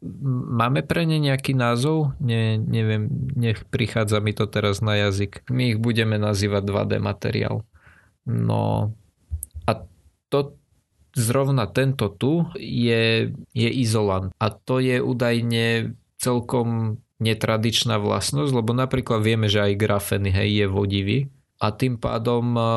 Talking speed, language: 125 wpm, Slovak